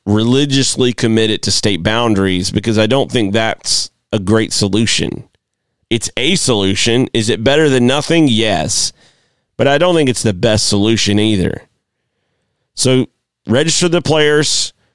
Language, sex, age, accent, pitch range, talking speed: English, male, 30-49, American, 110-130 Hz, 140 wpm